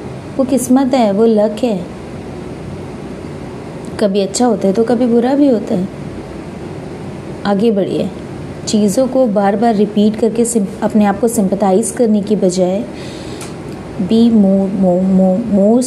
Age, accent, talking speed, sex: 20-39, native, 130 wpm, female